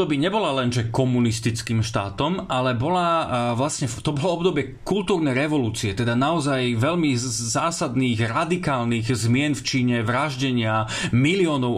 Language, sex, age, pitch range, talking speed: Slovak, male, 30-49, 120-150 Hz, 115 wpm